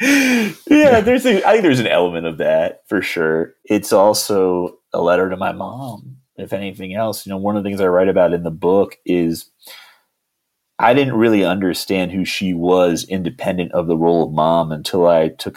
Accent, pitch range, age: American, 85-105 Hz, 30-49